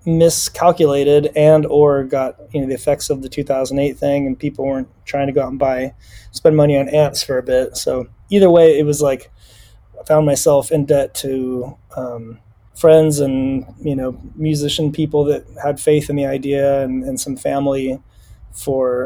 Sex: male